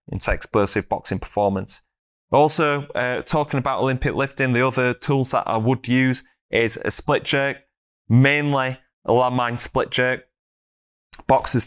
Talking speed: 140 wpm